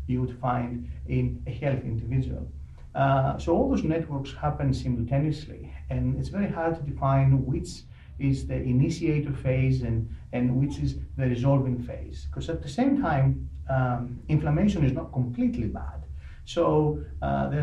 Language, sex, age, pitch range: English, male, 40-59, 115-140 Hz